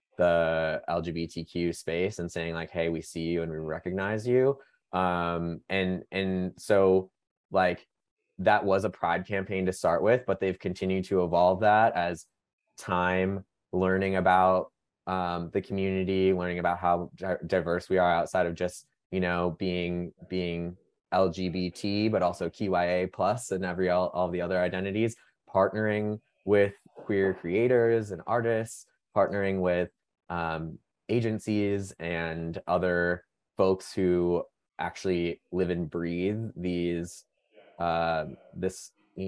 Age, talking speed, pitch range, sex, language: 20-39, 135 wpm, 85-95 Hz, male, English